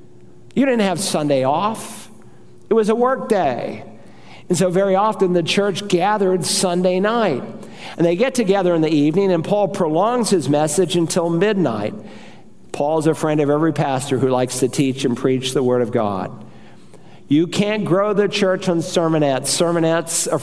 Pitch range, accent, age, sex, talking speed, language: 150-185 Hz, American, 50-69, male, 170 wpm, English